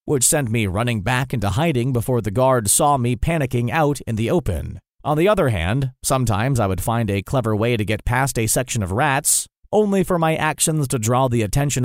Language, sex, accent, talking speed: English, male, American, 220 wpm